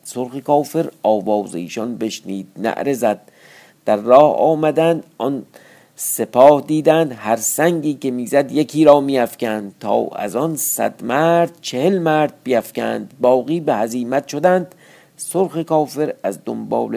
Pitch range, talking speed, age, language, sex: 105-150 Hz, 125 wpm, 50-69, Persian, male